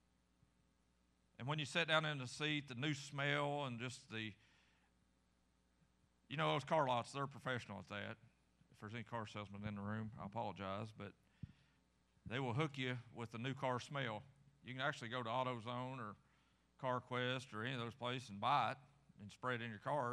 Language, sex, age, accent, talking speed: English, male, 40-59, American, 195 wpm